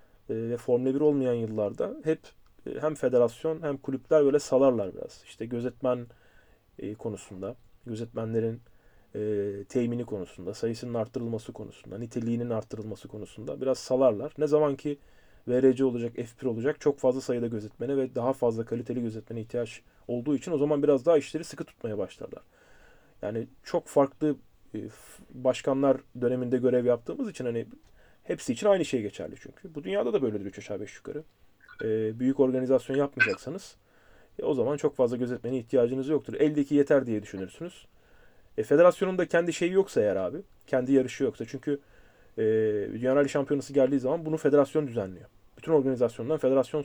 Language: Turkish